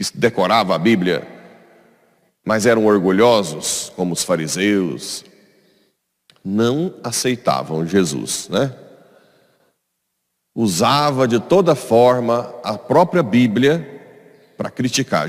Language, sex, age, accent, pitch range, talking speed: Portuguese, male, 40-59, Brazilian, 100-130 Hz, 85 wpm